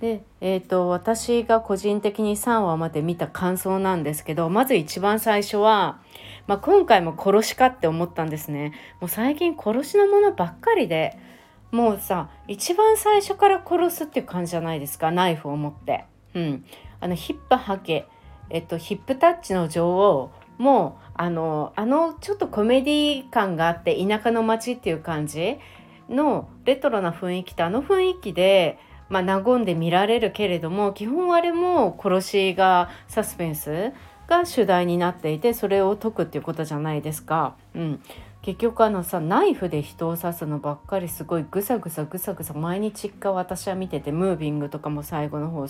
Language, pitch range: Japanese, 165-220 Hz